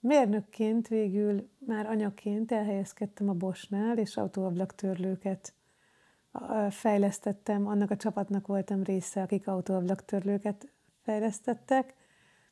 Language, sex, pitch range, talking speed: Hungarian, female, 195-235 Hz, 95 wpm